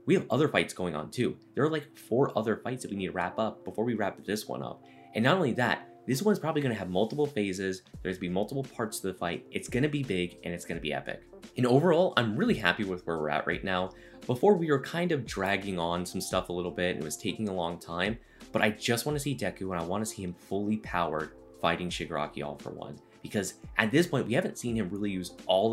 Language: English